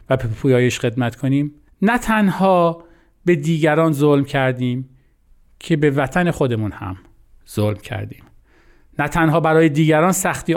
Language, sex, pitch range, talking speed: Persian, male, 115-155 Hz, 125 wpm